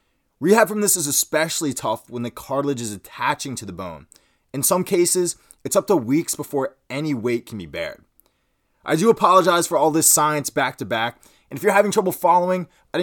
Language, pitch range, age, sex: English, 135-180 Hz, 20-39, male